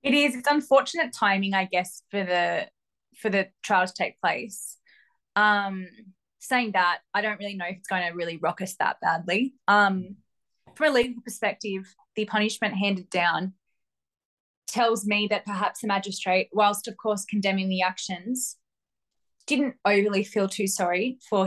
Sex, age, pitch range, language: female, 20-39, 185-220 Hz, English